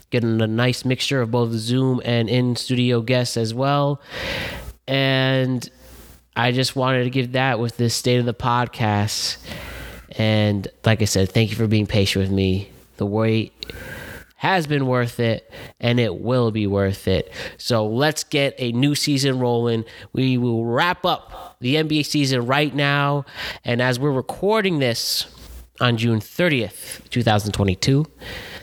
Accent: American